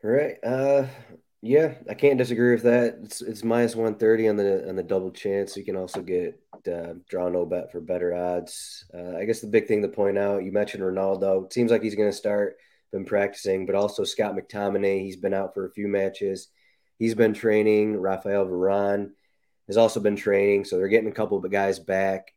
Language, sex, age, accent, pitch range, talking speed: English, male, 20-39, American, 95-115 Hz, 215 wpm